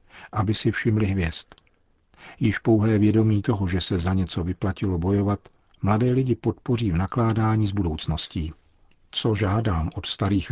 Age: 50-69